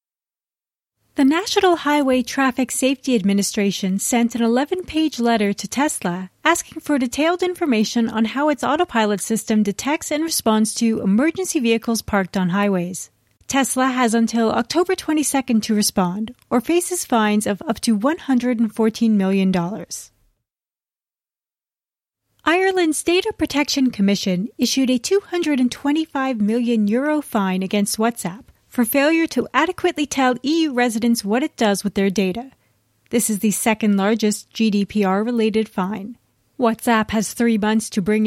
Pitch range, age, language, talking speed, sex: 210-280 Hz, 30-49, English, 125 wpm, female